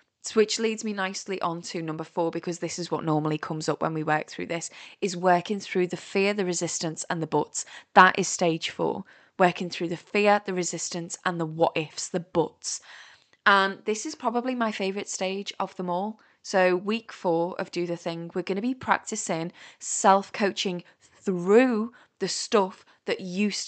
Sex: female